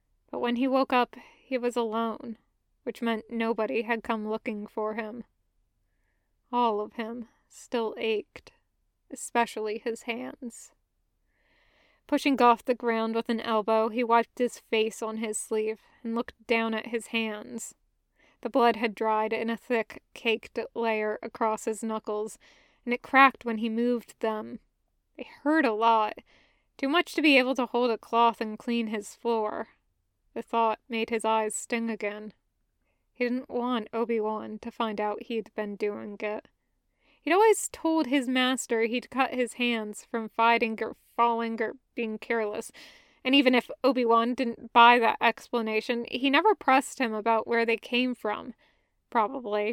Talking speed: 160 wpm